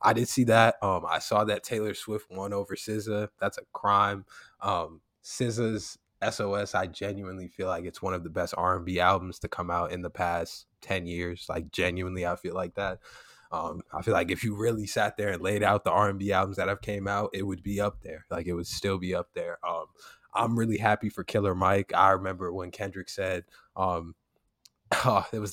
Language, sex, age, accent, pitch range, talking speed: English, male, 20-39, American, 90-105 Hz, 215 wpm